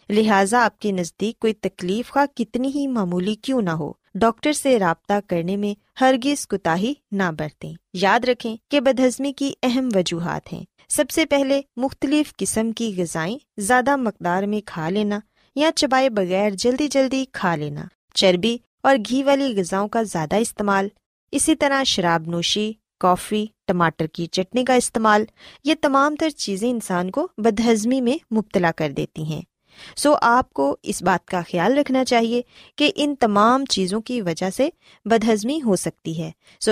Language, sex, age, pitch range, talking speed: Urdu, female, 20-39, 190-265 Hz, 165 wpm